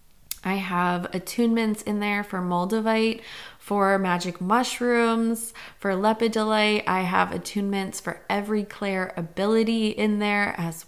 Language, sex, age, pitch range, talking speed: English, female, 20-39, 175-220 Hz, 120 wpm